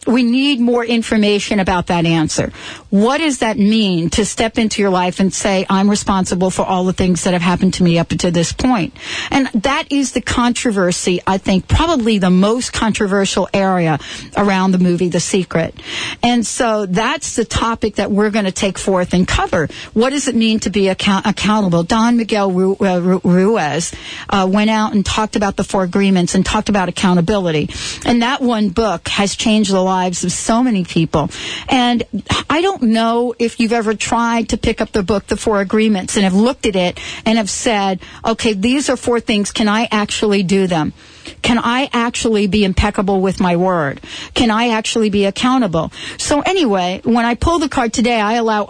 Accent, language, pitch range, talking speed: American, English, 190-235 Hz, 195 wpm